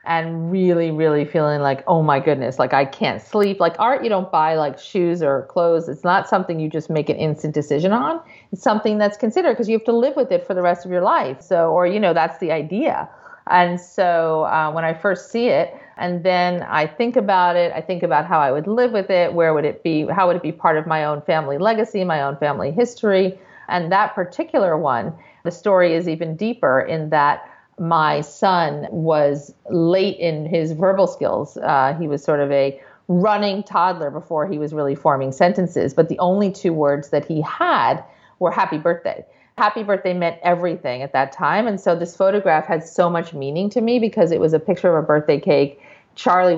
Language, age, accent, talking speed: English, 40-59, American, 215 wpm